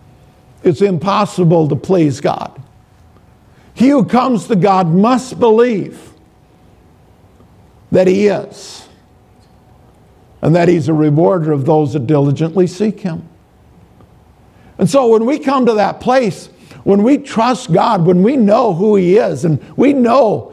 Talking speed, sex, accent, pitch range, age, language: 135 wpm, male, American, 150-220 Hz, 50-69, English